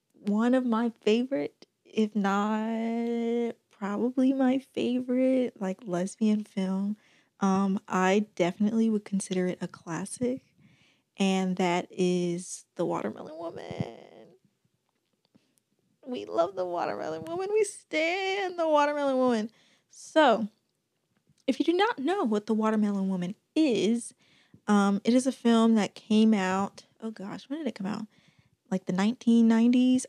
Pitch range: 190-235 Hz